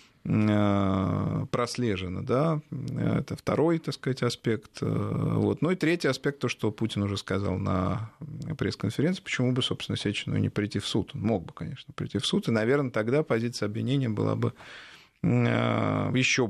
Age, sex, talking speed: 20-39, male, 155 wpm